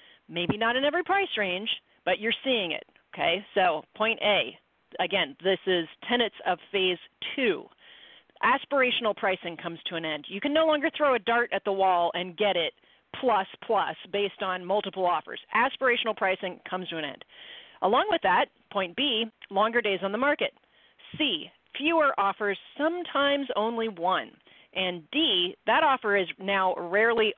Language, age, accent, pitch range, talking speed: English, 40-59, American, 180-245 Hz, 165 wpm